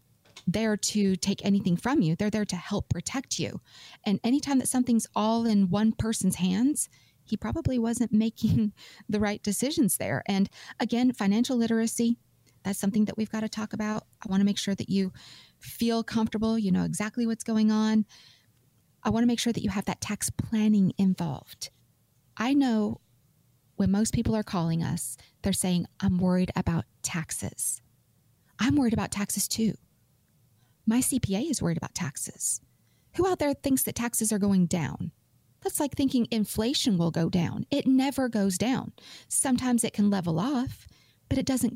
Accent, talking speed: American, 175 wpm